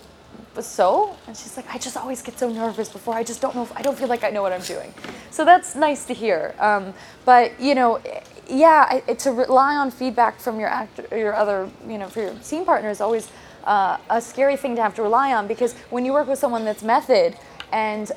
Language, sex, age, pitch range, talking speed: English, female, 20-39, 200-250 Hz, 240 wpm